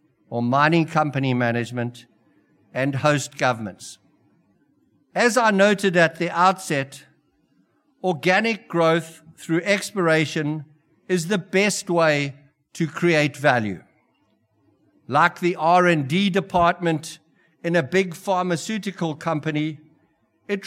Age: 60-79